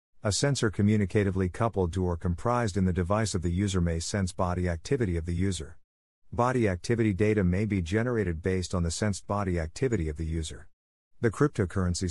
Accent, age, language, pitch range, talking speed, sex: American, 50-69, English, 90-115 Hz, 185 wpm, male